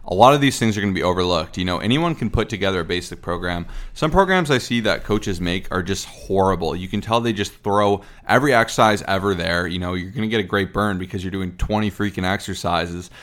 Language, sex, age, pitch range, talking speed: English, male, 20-39, 95-115 Hz, 245 wpm